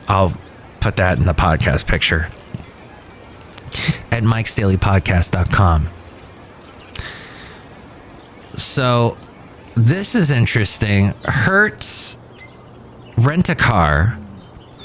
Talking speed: 60 wpm